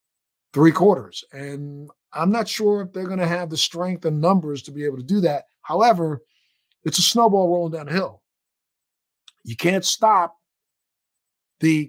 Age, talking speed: 50-69, 150 wpm